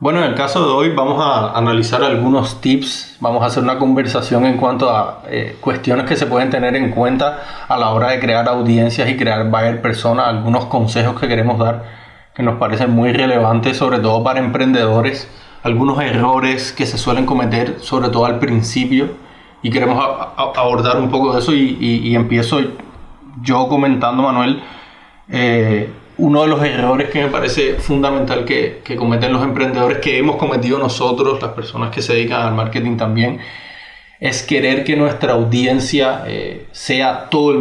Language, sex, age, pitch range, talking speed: Spanish, male, 20-39, 120-140 Hz, 180 wpm